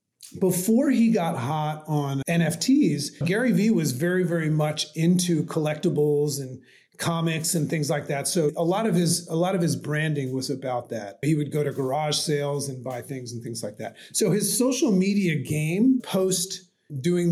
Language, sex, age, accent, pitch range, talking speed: English, male, 30-49, American, 150-190 Hz, 175 wpm